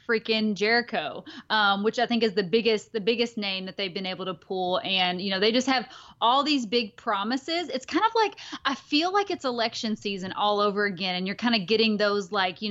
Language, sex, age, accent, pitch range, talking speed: English, female, 30-49, American, 190-225 Hz, 230 wpm